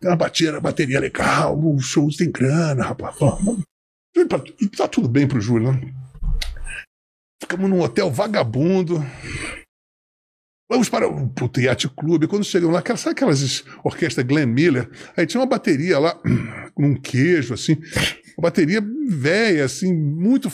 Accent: Brazilian